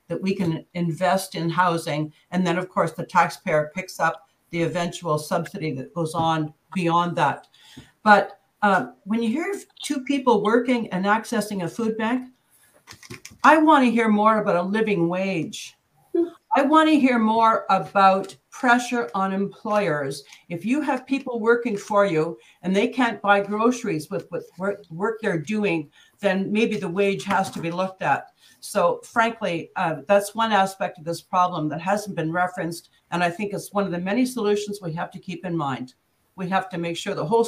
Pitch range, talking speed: 165-210 Hz, 180 wpm